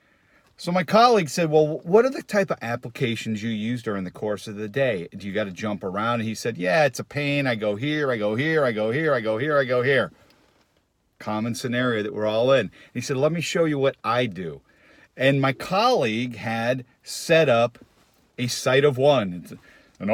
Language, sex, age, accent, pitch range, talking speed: English, male, 50-69, American, 115-155 Hz, 220 wpm